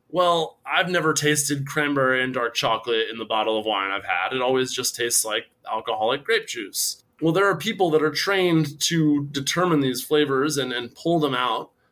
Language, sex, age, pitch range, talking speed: English, male, 20-39, 125-150 Hz, 195 wpm